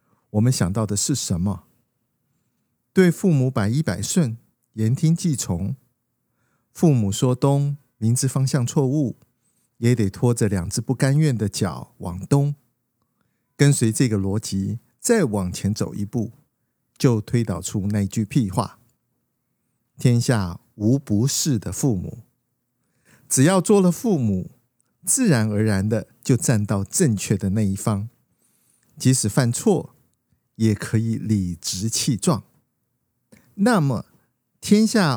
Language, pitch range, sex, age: Chinese, 105-140 Hz, male, 50-69